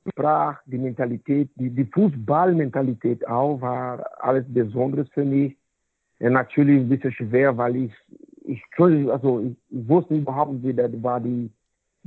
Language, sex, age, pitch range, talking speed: German, male, 60-79, 120-145 Hz, 150 wpm